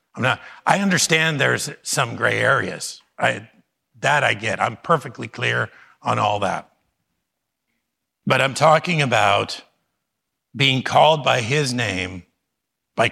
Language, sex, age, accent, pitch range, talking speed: English, male, 50-69, American, 115-140 Hz, 115 wpm